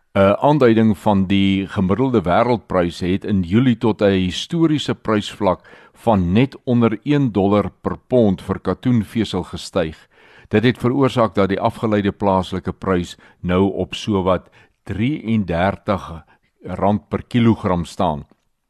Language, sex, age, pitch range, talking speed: Dutch, male, 60-79, 90-110 Hz, 125 wpm